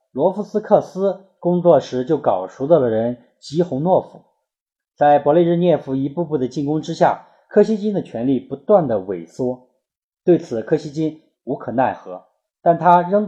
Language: Chinese